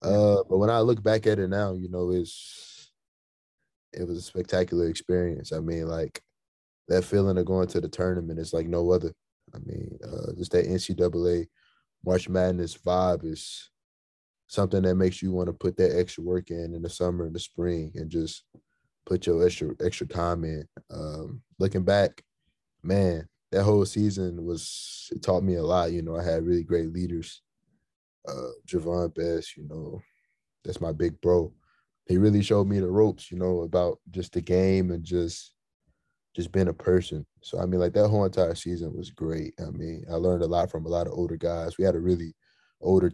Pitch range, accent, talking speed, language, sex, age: 85-90 Hz, American, 195 wpm, English, male, 20-39